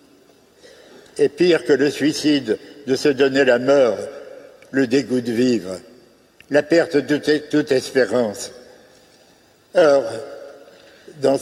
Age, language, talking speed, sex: 60-79, French, 110 wpm, male